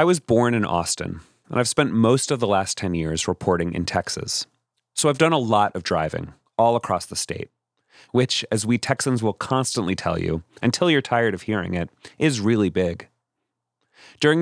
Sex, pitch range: male, 90-125 Hz